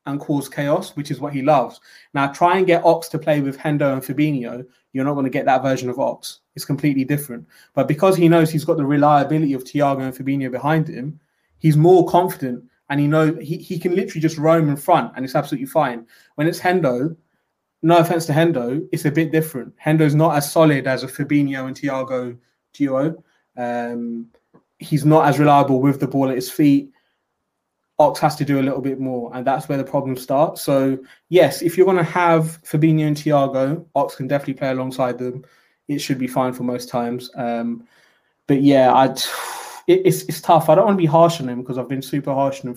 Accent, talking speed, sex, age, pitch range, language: British, 215 wpm, male, 20-39, 130-155 Hz, English